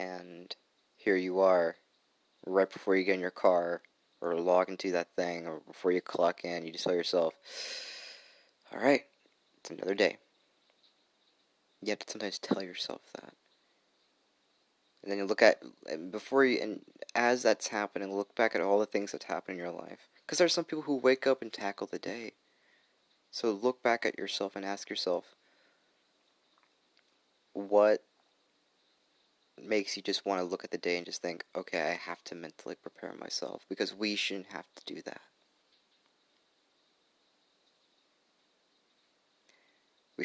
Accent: American